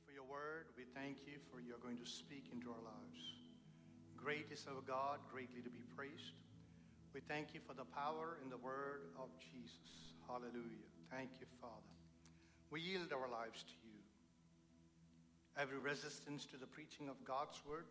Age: 60-79